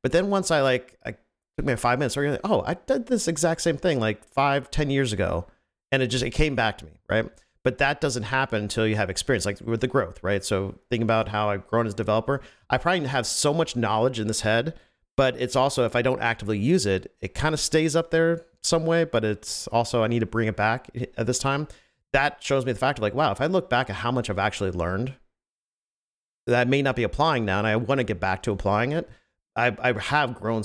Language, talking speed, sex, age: English, 260 wpm, male, 40-59